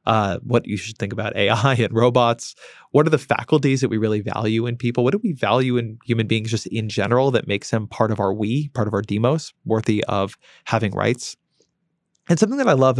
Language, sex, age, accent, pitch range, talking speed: English, male, 20-39, American, 110-135 Hz, 225 wpm